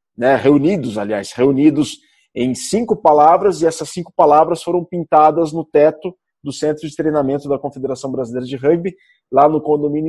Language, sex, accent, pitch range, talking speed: Portuguese, male, Brazilian, 135-180 Hz, 160 wpm